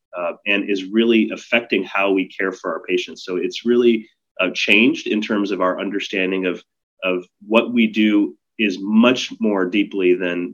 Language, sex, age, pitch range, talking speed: English, male, 30-49, 95-115 Hz, 175 wpm